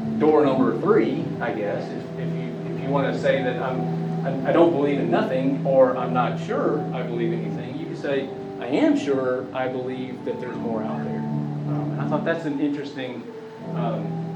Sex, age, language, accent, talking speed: male, 30-49, English, American, 205 wpm